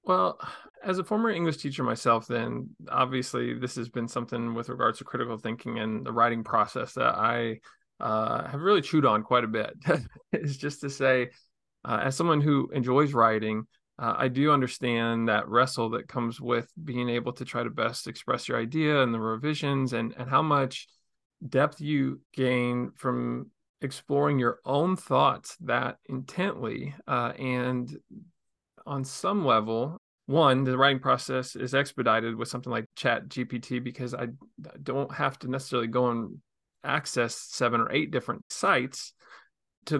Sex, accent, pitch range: male, American, 120-140 Hz